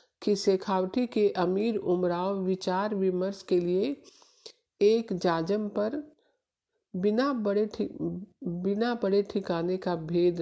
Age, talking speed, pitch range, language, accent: 50-69, 105 wpm, 180-230 Hz, Hindi, native